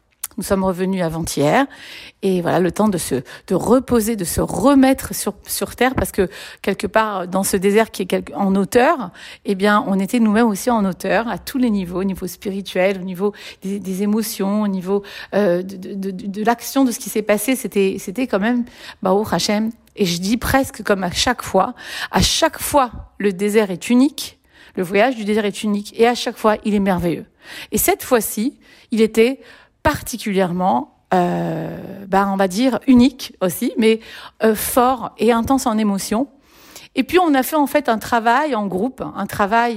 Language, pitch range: French, 195-250 Hz